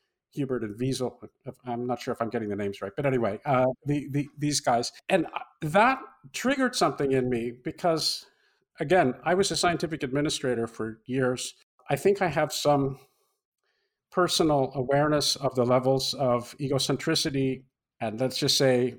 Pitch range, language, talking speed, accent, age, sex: 130-185 Hz, English, 160 wpm, American, 50-69, male